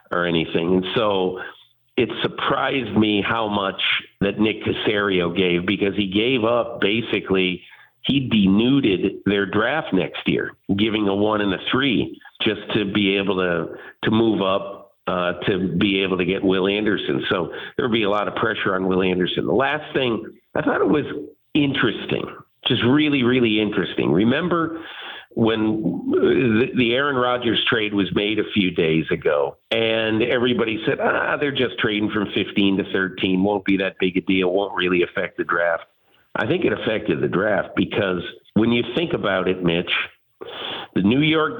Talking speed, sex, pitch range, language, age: 170 wpm, male, 95-115 Hz, English, 50-69